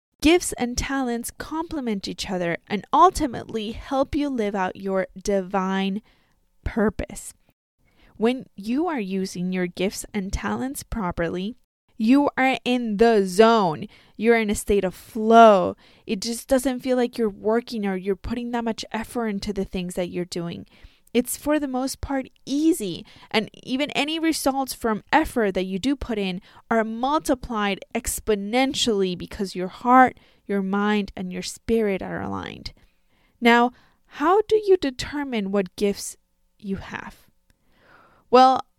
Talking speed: 145 wpm